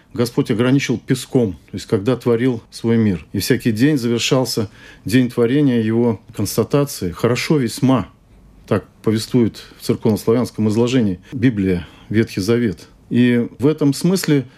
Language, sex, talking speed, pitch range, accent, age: Russian, male, 130 wpm, 110-140 Hz, native, 40-59